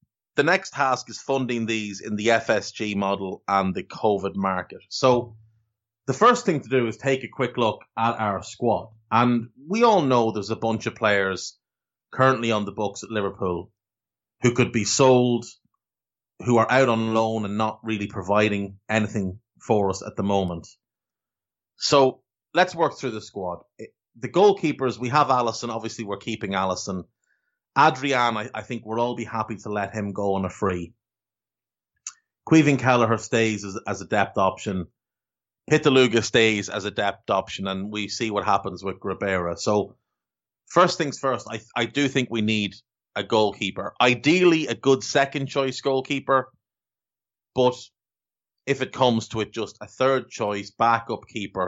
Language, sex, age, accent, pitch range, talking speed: English, male, 30-49, Irish, 100-125 Hz, 165 wpm